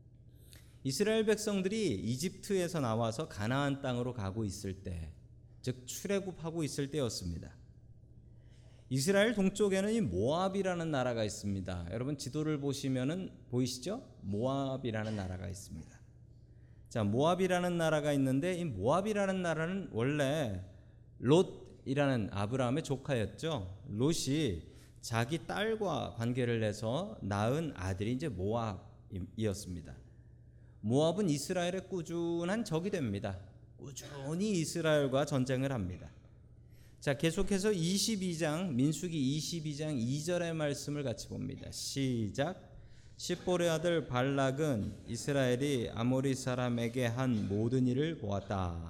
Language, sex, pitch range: Korean, male, 115-160 Hz